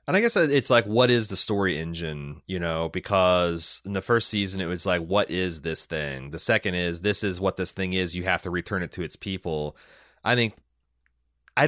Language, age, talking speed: English, 30-49, 225 wpm